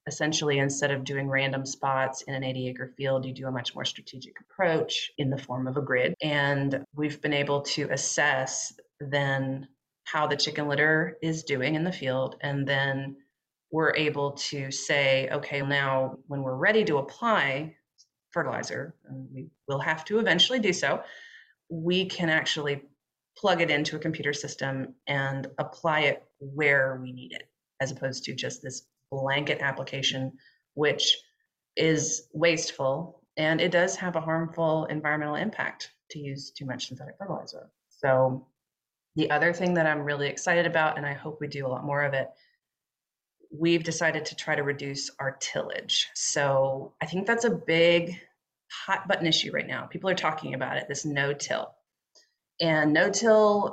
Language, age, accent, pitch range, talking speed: English, 30-49, American, 135-160 Hz, 165 wpm